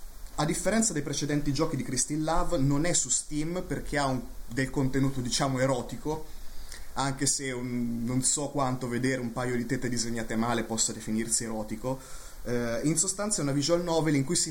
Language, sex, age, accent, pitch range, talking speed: Italian, male, 30-49, native, 120-155 Hz, 175 wpm